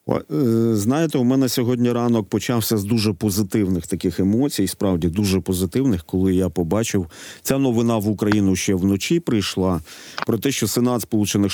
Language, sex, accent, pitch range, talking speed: Ukrainian, male, native, 95-120 Hz, 155 wpm